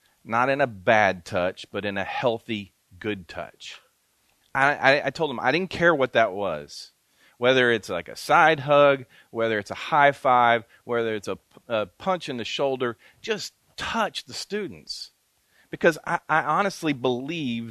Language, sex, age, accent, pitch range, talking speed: English, male, 40-59, American, 115-160 Hz, 170 wpm